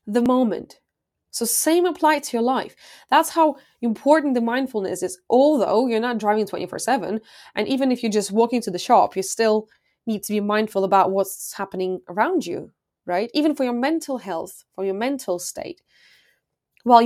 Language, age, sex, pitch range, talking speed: English, 20-39, female, 195-255 Hz, 175 wpm